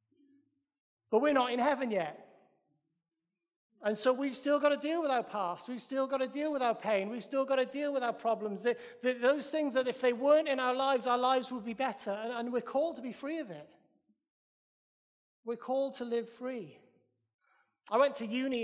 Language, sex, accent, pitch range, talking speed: English, male, British, 225-280 Hz, 205 wpm